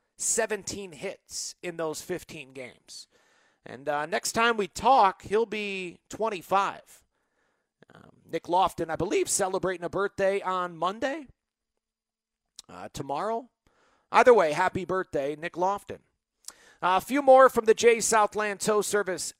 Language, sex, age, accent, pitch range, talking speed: English, male, 40-59, American, 175-225 Hz, 135 wpm